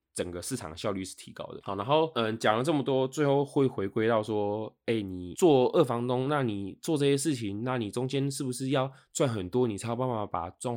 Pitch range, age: 95-130 Hz, 20-39